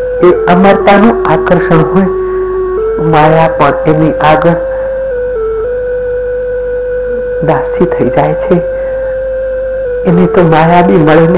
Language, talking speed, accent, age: Hindi, 85 wpm, native, 60-79